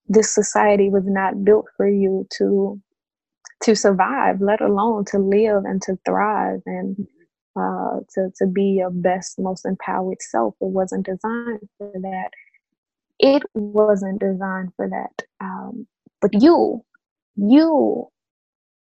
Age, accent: 20-39, American